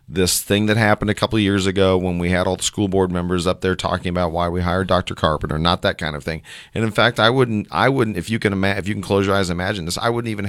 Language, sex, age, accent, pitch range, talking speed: English, male, 40-59, American, 90-110 Hz, 305 wpm